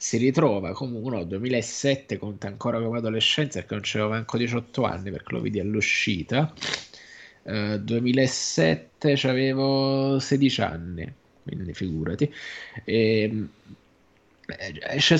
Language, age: Italian, 20-39